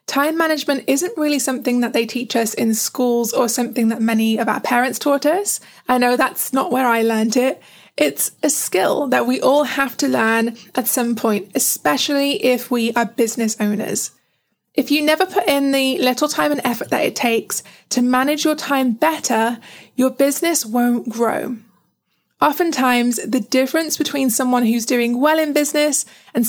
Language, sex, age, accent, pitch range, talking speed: English, female, 20-39, British, 235-285 Hz, 180 wpm